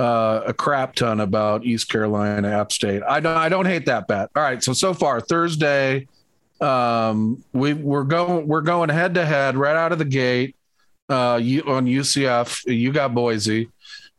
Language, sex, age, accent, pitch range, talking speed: English, male, 40-59, American, 125-170 Hz, 185 wpm